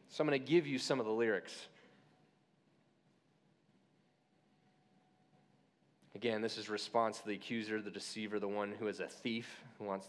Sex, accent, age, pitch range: male, American, 30-49, 165-230 Hz